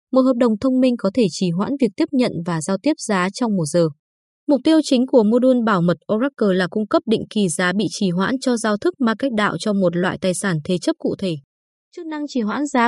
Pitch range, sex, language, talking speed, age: 190-250 Hz, female, Vietnamese, 265 wpm, 20-39